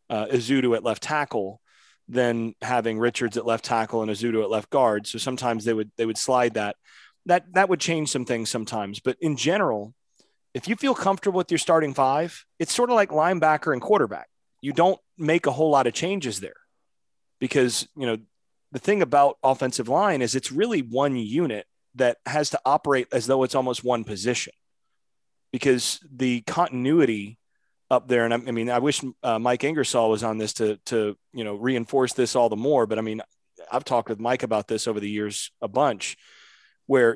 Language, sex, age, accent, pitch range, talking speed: English, male, 30-49, American, 115-140 Hz, 195 wpm